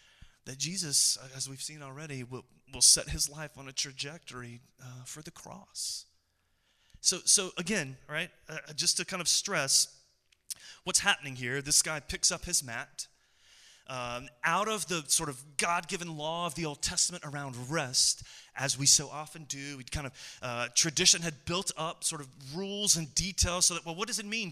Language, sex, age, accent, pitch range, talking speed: English, male, 30-49, American, 130-170 Hz, 185 wpm